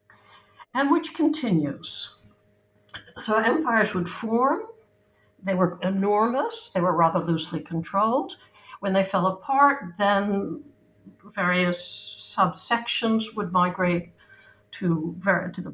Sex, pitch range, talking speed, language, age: female, 170-210 Hz, 105 wpm, English, 60-79